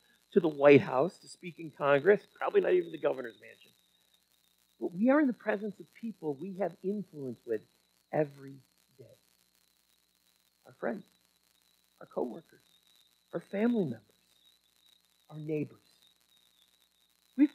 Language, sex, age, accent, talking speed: English, male, 50-69, American, 130 wpm